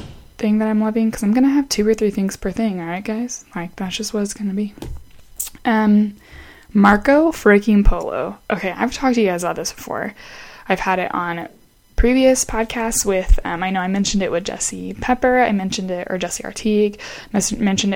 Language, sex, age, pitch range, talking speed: English, female, 20-39, 180-215 Hz, 205 wpm